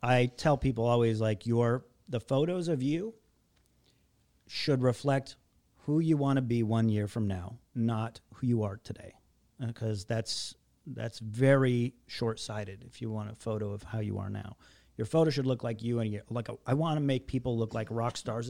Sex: male